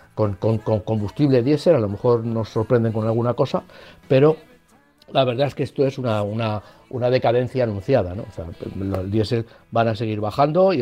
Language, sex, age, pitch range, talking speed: Spanish, male, 60-79, 110-135 Hz, 195 wpm